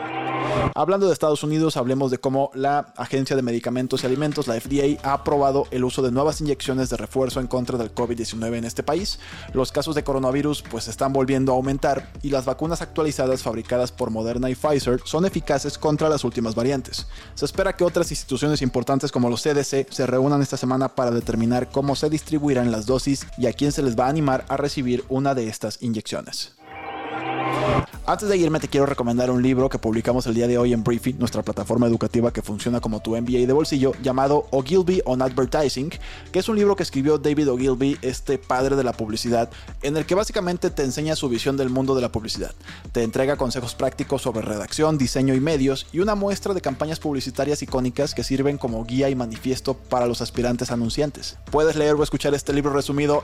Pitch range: 125-145 Hz